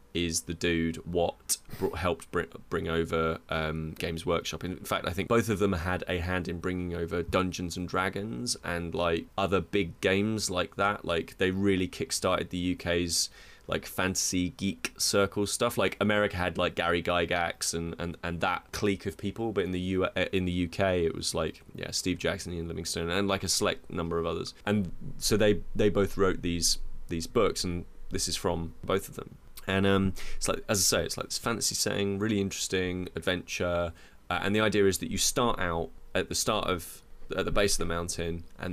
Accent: British